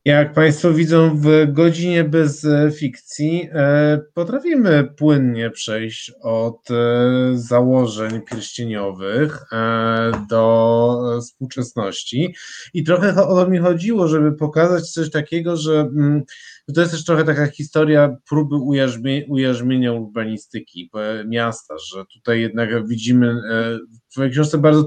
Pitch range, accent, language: 120-150 Hz, native, Polish